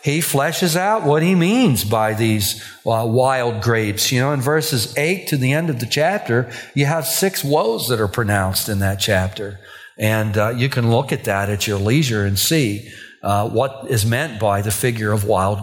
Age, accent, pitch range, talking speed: 50-69, American, 115-165 Hz, 205 wpm